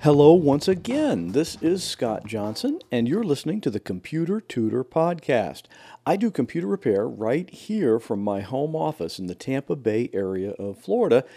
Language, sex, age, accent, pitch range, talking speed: English, male, 50-69, American, 115-170 Hz, 170 wpm